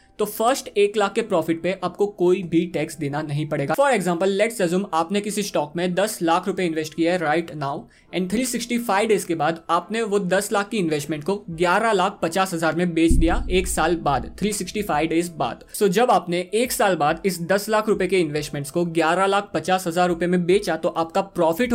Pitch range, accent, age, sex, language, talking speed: 165-205 Hz, native, 20-39, male, Hindi, 210 wpm